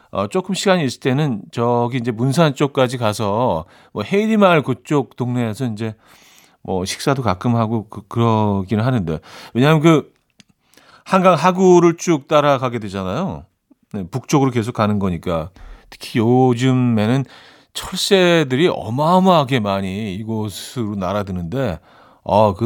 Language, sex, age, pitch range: Korean, male, 40-59, 100-145 Hz